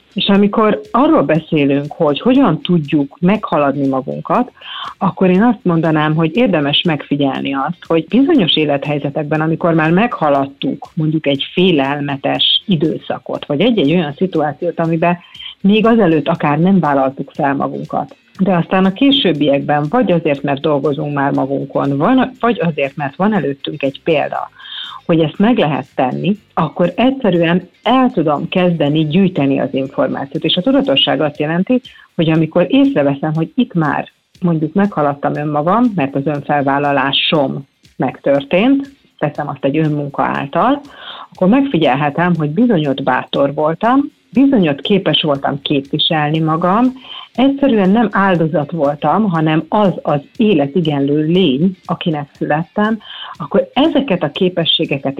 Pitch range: 145-195 Hz